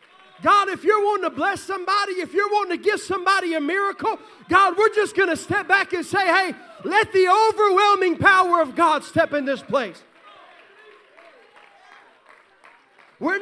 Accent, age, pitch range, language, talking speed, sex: American, 30-49, 255-335 Hz, English, 160 wpm, male